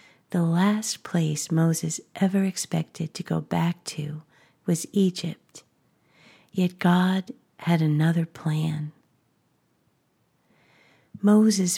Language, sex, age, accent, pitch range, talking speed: English, female, 50-69, American, 155-185 Hz, 90 wpm